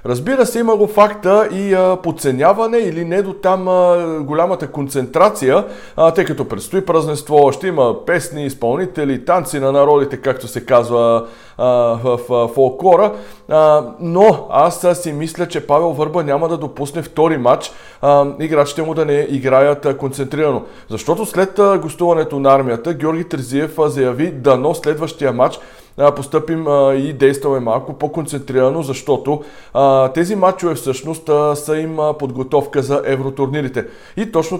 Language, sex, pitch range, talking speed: Bulgarian, male, 135-165 Hz, 145 wpm